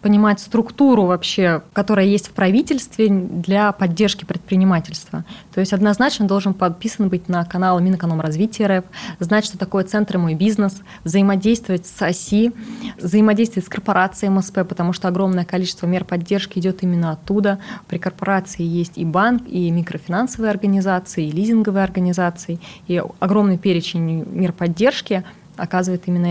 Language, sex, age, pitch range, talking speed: Russian, female, 20-39, 175-210 Hz, 140 wpm